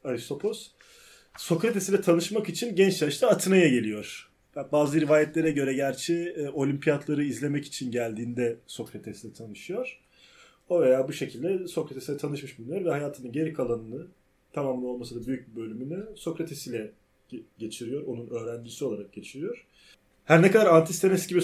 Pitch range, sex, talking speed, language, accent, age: 120-160 Hz, male, 130 wpm, Turkish, native, 30-49